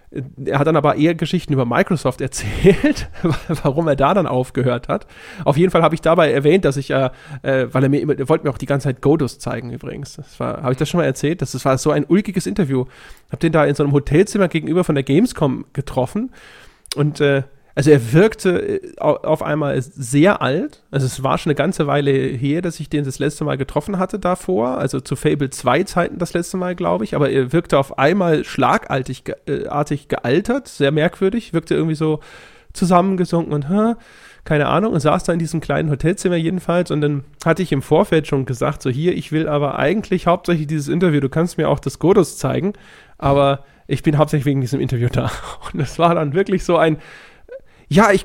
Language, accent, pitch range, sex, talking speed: German, German, 140-180 Hz, male, 210 wpm